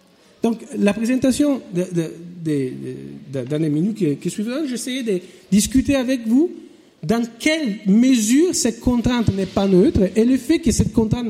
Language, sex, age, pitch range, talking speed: French, male, 50-69, 180-260 Hz, 140 wpm